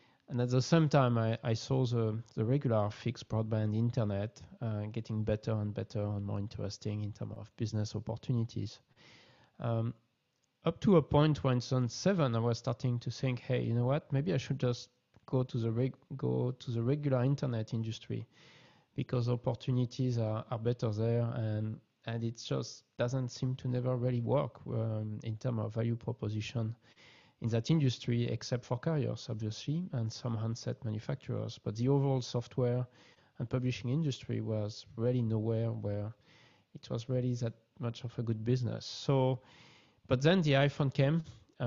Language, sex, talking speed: English, male, 170 wpm